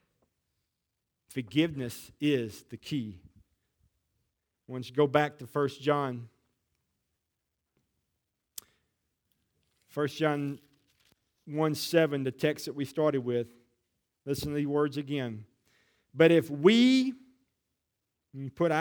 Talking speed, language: 105 wpm, English